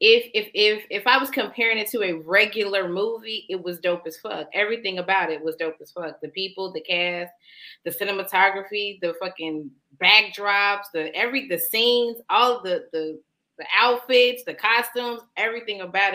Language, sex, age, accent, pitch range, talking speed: English, female, 20-39, American, 170-235 Hz, 170 wpm